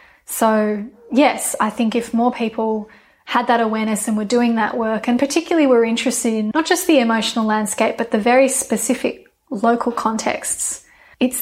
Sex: female